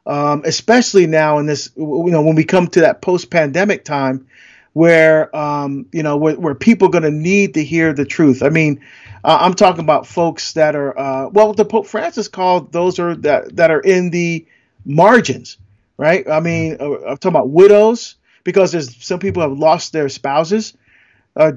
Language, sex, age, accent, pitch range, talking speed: English, male, 40-59, American, 150-195 Hz, 190 wpm